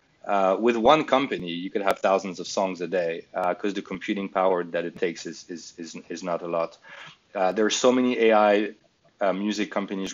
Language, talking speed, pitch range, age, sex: English, 215 wpm, 95-110 Hz, 30-49, male